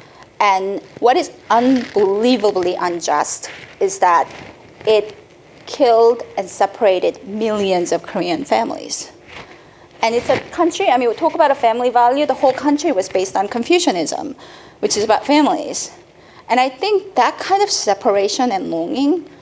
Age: 30-49